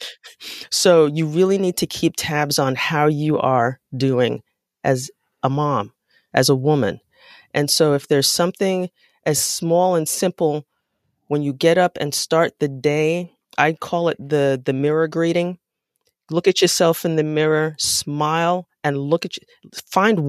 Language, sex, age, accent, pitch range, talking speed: English, female, 30-49, American, 145-180 Hz, 160 wpm